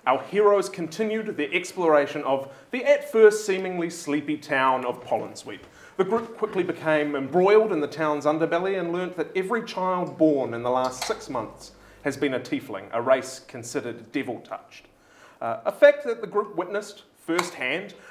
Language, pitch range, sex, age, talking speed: English, 145-200 Hz, male, 30-49, 160 wpm